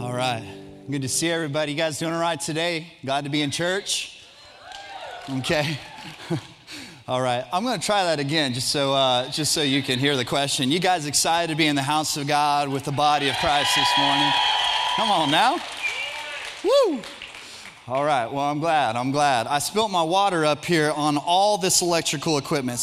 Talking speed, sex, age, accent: 195 wpm, male, 30-49, American